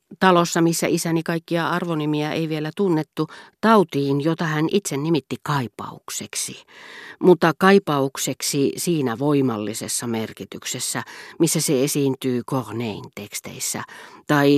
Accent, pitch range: native, 125-165 Hz